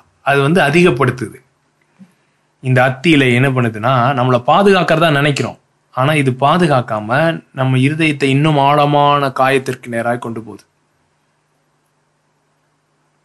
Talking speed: 100 wpm